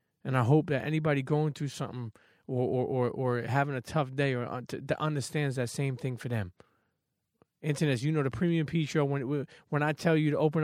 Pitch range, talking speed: 125-155 Hz, 220 wpm